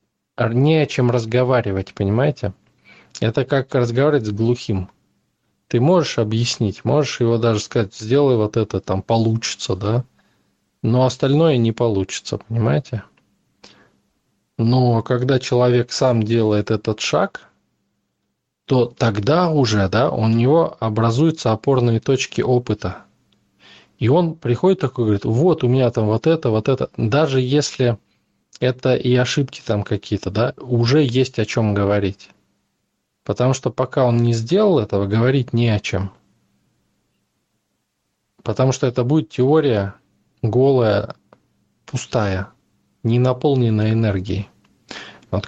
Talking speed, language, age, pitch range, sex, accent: 125 wpm, Russian, 20-39, 105-130 Hz, male, native